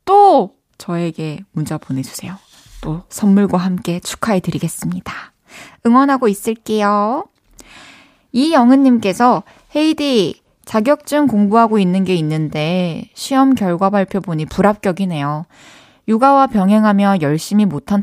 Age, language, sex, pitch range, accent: 20-39, Korean, female, 190-250 Hz, native